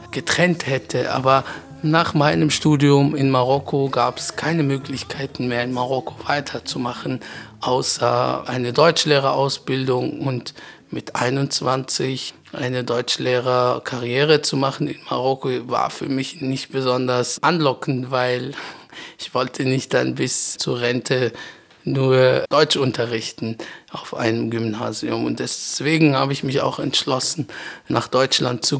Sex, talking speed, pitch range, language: male, 120 wpm, 125-145 Hz, German